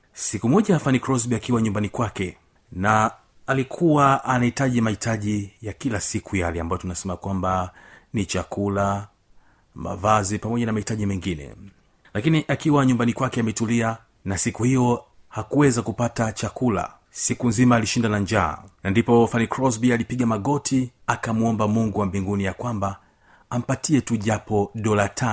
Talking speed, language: 135 wpm, Swahili